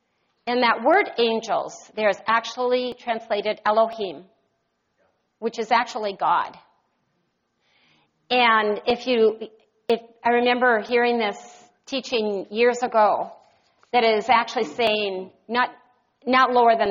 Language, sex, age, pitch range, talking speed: English, female, 40-59, 210-245 Hz, 115 wpm